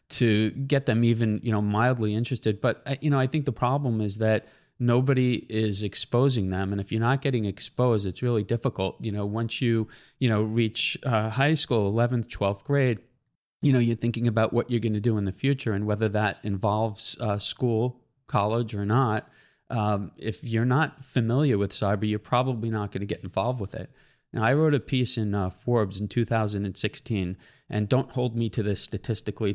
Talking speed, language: 200 wpm, English